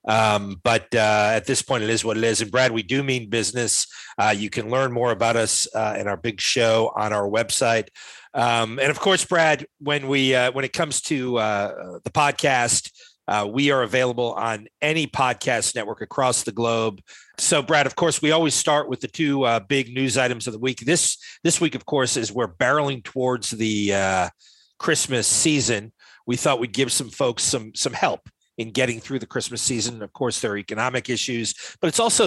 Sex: male